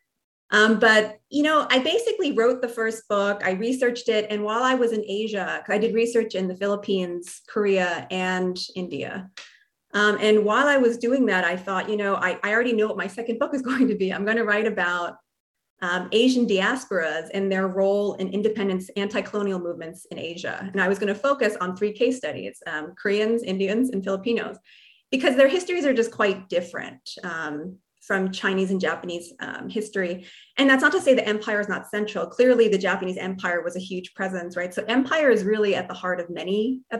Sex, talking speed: female, 200 wpm